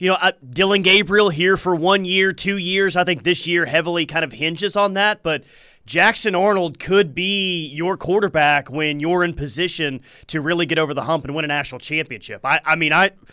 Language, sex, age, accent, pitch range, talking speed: English, male, 30-49, American, 150-195 Hz, 205 wpm